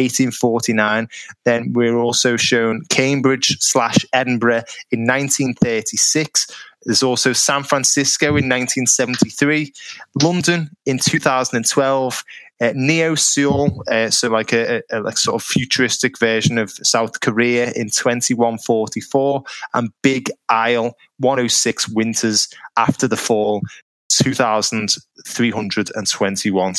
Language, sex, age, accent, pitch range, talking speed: English, male, 20-39, British, 110-130 Hz, 95 wpm